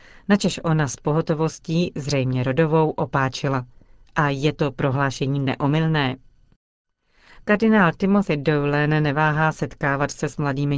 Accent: native